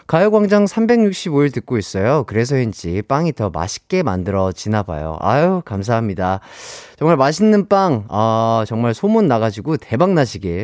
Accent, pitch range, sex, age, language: native, 95-160 Hz, male, 30-49, Korean